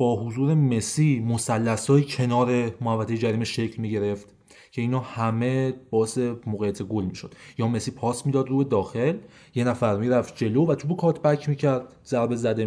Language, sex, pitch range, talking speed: Persian, male, 115-150 Hz, 185 wpm